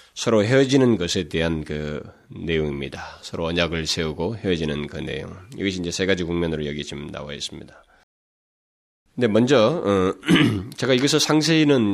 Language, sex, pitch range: Korean, male, 80-105 Hz